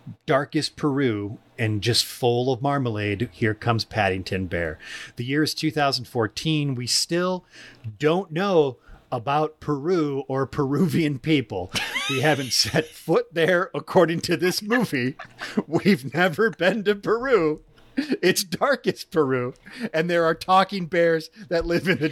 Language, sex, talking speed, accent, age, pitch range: English, male, 135 wpm, American, 40-59, 120-170 Hz